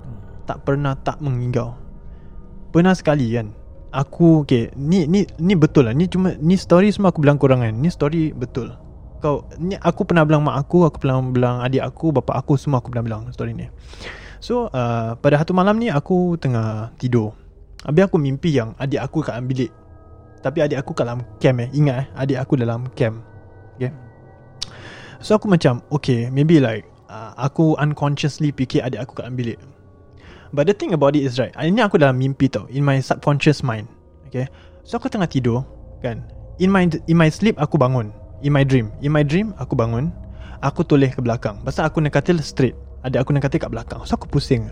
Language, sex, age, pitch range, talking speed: Malay, male, 20-39, 115-155 Hz, 200 wpm